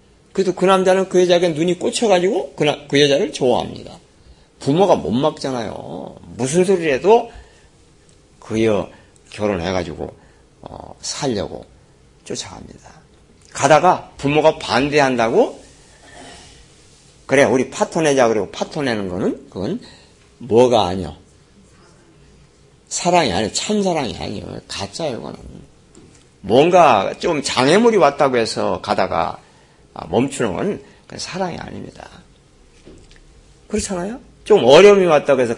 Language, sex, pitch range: Korean, male, 105-180 Hz